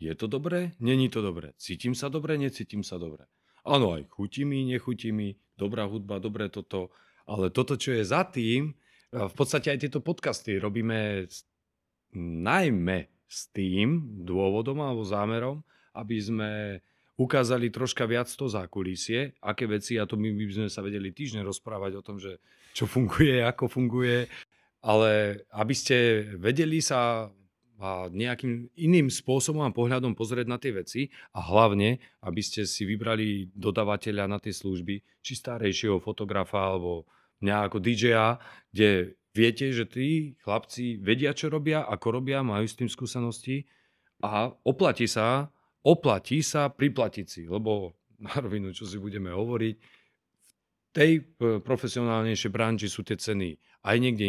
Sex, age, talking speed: male, 40-59, 145 wpm